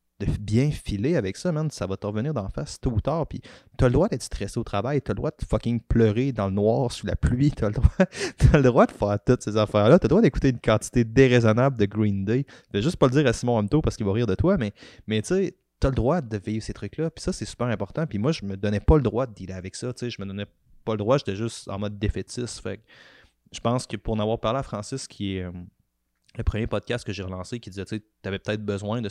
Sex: male